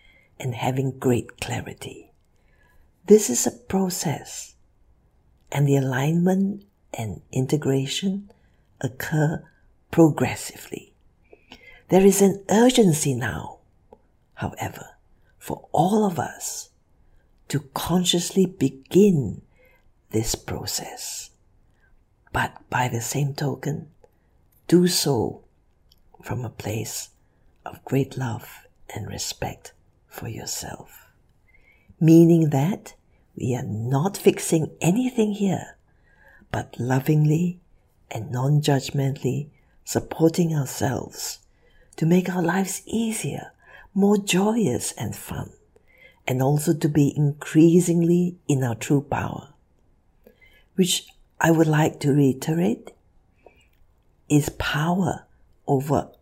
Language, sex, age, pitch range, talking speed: English, female, 60-79, 125-175 Hz, 95 wpm